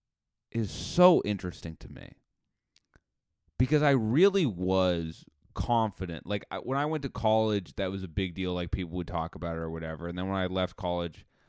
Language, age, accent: English, 20-39, American